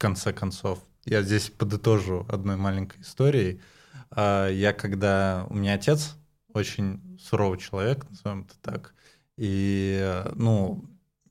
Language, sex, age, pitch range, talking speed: Russian, male, 20-39, 100-130 Hz, 110 wpm